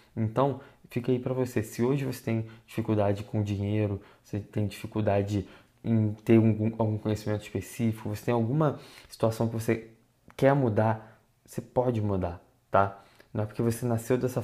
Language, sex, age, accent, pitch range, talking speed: Portuguese, male, 20-39, Brazilian, 105-120 Hz, 160 wpm